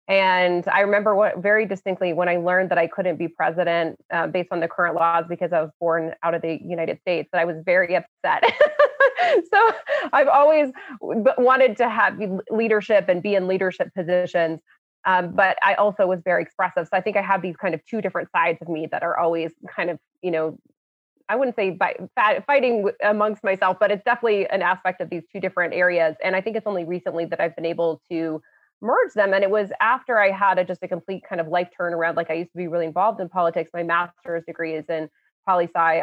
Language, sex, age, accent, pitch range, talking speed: English, female, 20-39, American, 170-210 Hz, 220 wpm